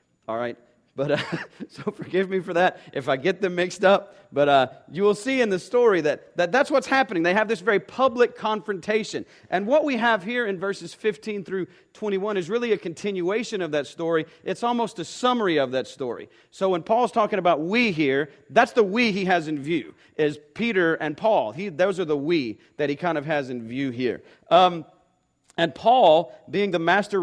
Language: English